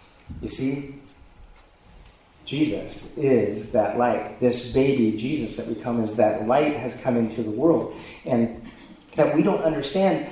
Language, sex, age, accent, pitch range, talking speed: English, male, 40-59, American, 110-140 Hz, 145 wpm